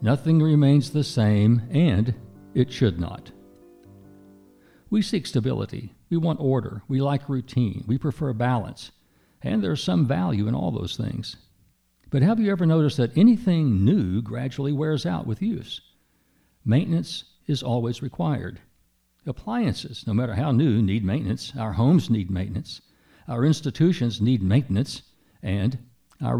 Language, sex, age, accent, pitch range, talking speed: English, male, 60-79, American, 100-135 Hz, 140 wpm